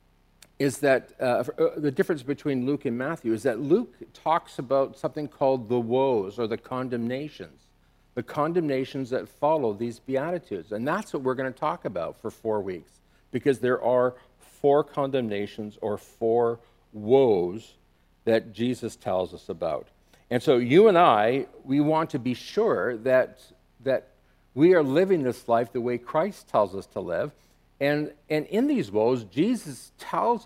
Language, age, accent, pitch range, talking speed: English, 50-69, American, 115-145 Hz, 160 wpm